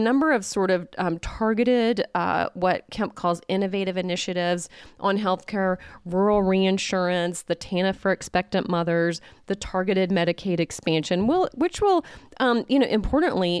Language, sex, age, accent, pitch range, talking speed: English, female, 30-49, American, 165-195 Hz, 145 wpm